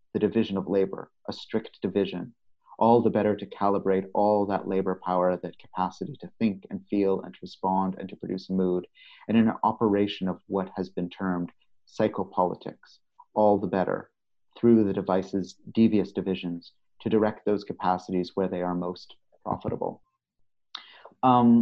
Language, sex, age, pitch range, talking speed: English, male, 30-49, 95-110 Hz, 155 wpm